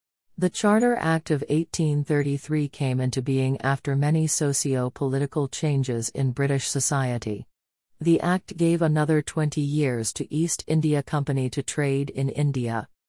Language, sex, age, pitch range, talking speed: English, female, 40-59, 130-155 Hz, 135 wpm